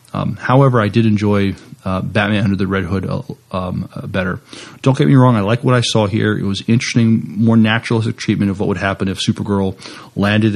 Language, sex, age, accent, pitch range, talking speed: English, male, 30-49, American, 95-110 Hz, 215 wpm